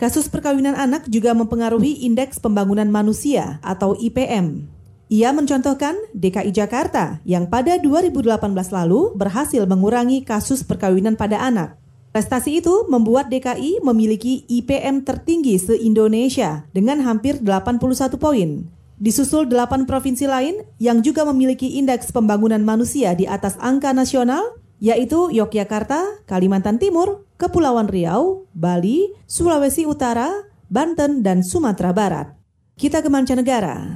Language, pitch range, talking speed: Indonesian, 210-275 Hz, 115 wpm